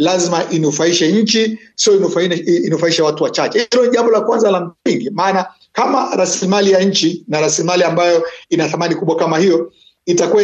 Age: 50-69